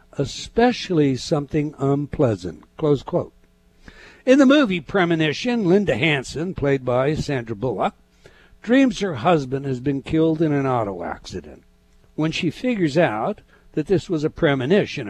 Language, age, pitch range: English, 60-79, 135-195 Hz